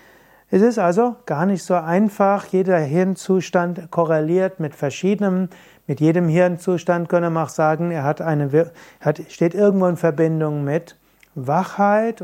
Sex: male